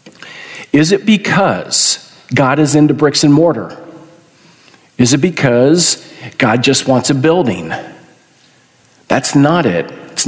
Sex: male